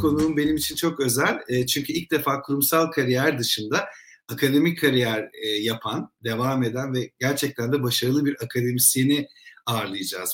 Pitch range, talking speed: 130-180 Hz, 135 wpm